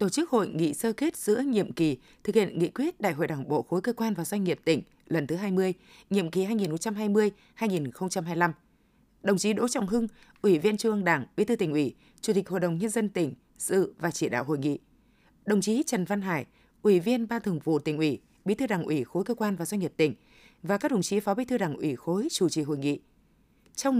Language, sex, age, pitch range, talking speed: Vietnamese, female, 20-39, 170-225 Hz, 235 wpm